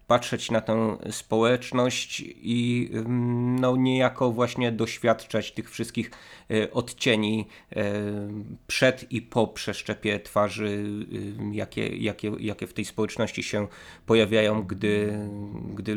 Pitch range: 105-125 Hz